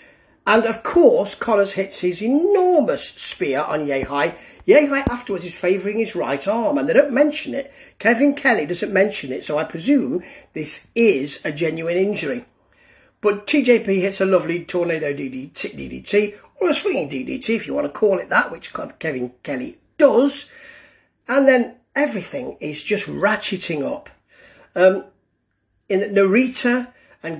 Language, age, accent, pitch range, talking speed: English, 40-59, British, 175-245 Hz, 150 wpm